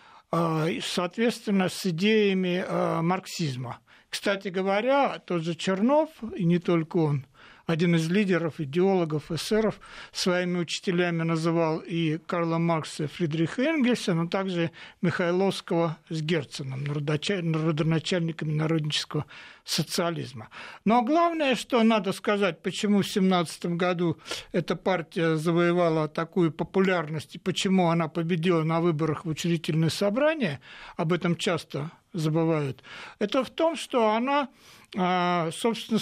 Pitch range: 170-215 Hz